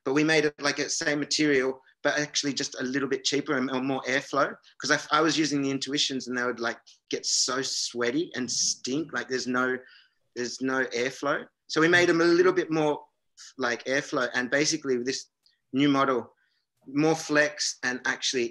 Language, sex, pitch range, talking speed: English, male, 120-145 Hz, 195 wpm